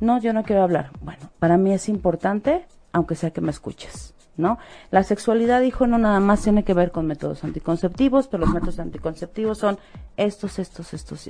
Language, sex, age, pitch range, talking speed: Spanish, female, 40-59, 160-210 Hz, 195 wpm